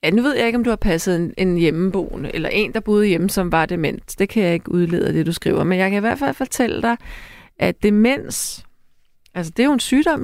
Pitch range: 180-230 Hz